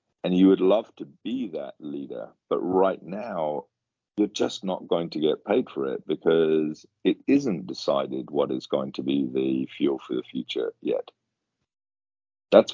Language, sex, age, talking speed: English, male, 40-59, 170 wpm